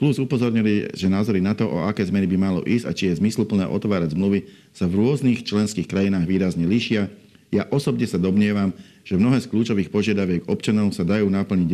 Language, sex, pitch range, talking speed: Slovak, male, 95-105 Hz, 195 wpm